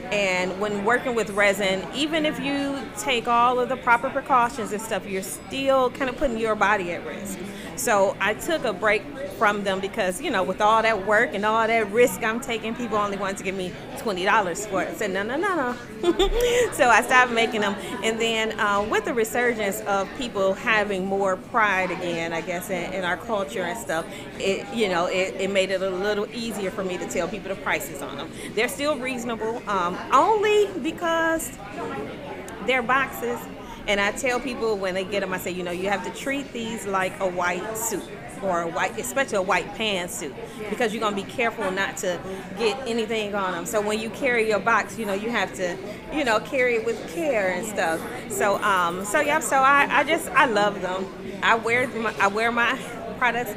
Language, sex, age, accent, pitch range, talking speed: English, female, 30-49, American, 195-245 Hz, 210 wpm